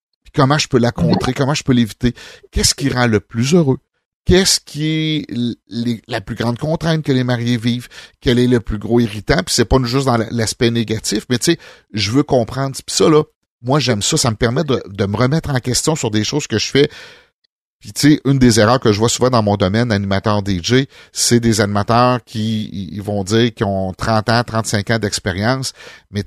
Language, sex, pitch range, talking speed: French, male, 105-130 Hz, 220 wpm